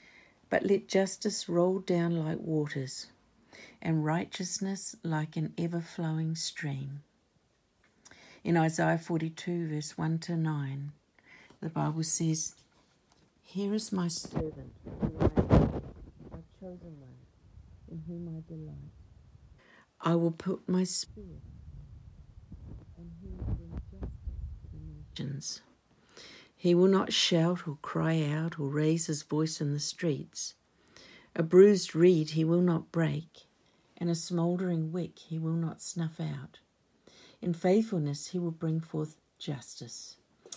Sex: female